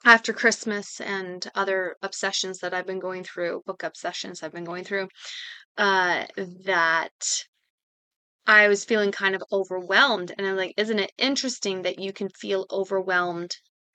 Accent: American